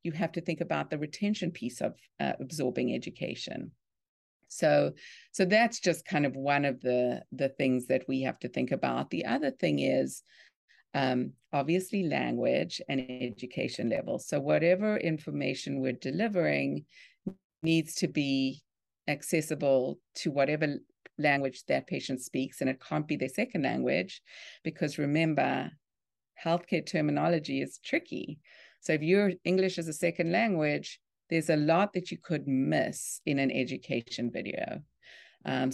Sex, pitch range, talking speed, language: female, 130-170 Hz, 145 wpm, English